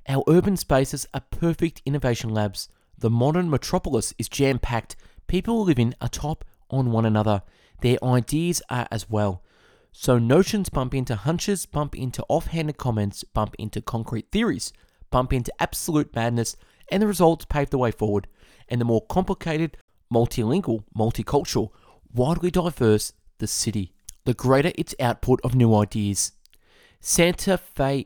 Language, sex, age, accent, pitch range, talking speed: English, male, 20-39, Australian, 115-155 Hz, 140 wpm